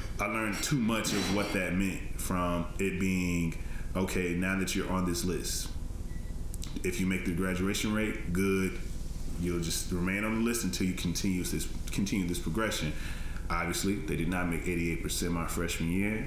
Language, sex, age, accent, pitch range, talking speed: English, male, 20-39, American, 80-95 Hz, 180 wpm